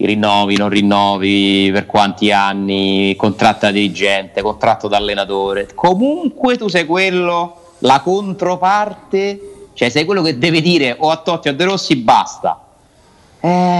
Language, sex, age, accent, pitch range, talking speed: Italian, male, 30-49, native, 100-130 Hz, 140 wpm